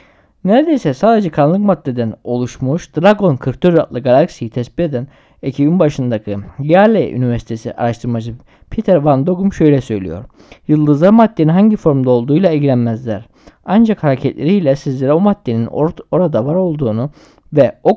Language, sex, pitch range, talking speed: Turkish, male, 125-175 Hz, 125 wpm